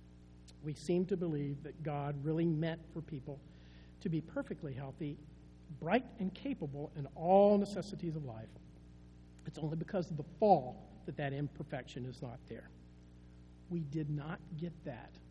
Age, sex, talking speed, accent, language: 50-69, male, 155 wpm, American, English